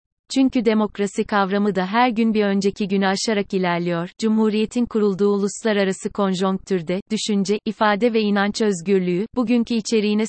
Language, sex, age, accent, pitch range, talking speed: Turkish, female, 30-49, native, 190-220 Hz, 135 wpm